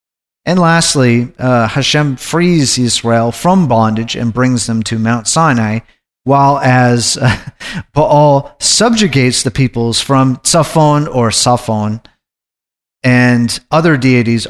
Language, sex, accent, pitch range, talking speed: English, male, American, 115-150 Hz, 115 wpm